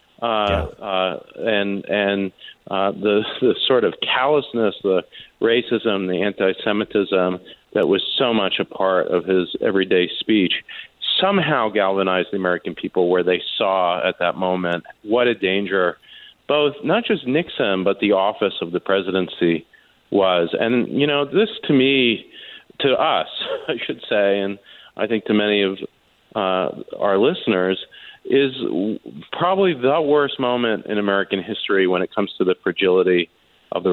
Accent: American